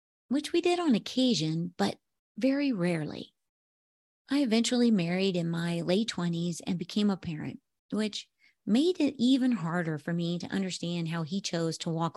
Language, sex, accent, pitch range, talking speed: English, female, American, 165-215 Hz, 165 wpm